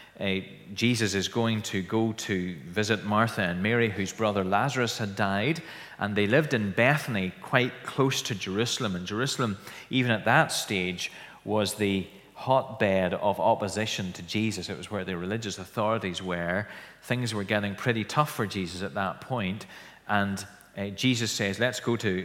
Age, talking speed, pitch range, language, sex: 30-49, 165 wpm, 95-115 Hz, English, male